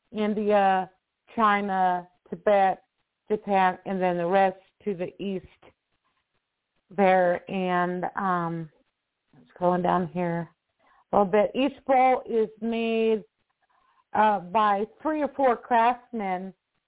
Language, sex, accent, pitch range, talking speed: English, female, American, 190-230 Hz, 115 wpm